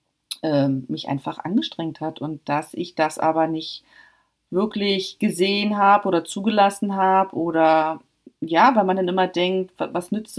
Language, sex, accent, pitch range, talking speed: German, female, German, 155-185 Hz, 145 wpm